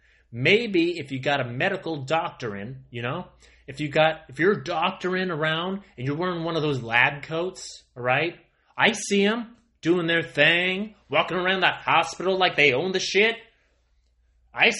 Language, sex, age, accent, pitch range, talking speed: English, male, 30-49, American, 145-205 Hz, 185 wpm